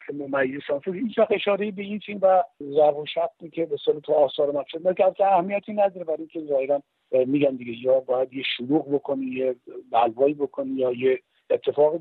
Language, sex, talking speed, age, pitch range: Persian, male, 180 wpm, 50-69, 135-175 Hz